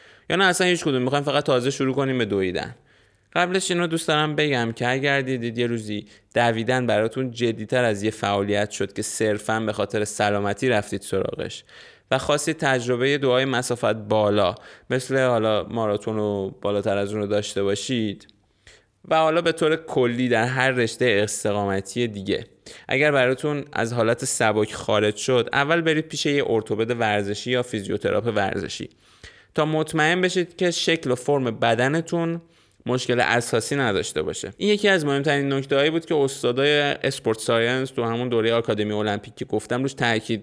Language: Persian